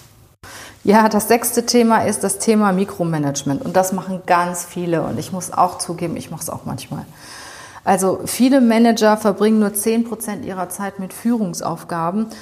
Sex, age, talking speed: female, 30-49, 165 wpm